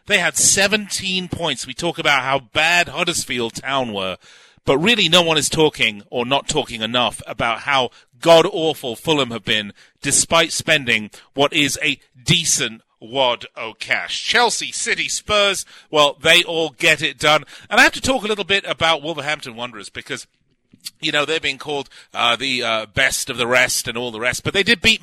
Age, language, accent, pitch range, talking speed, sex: 40-59, English, British, 130-175 Hz, 185 wpm, male